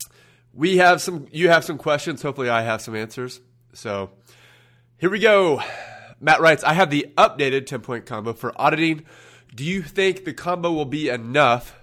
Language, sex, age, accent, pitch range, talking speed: English, male, 30-49, American, 115-145 Hz, 170 wpm